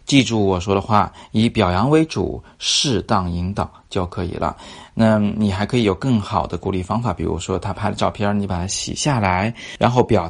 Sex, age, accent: male, 20-39, native